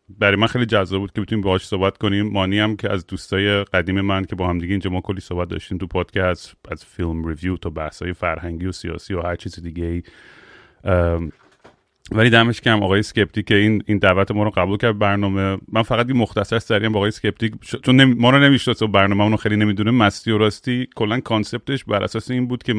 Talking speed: 205 wpm